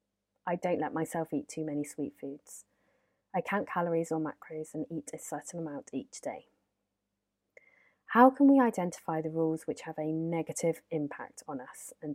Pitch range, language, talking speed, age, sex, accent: 150-180 Hz, English, 175 wpm, 30-49, female, British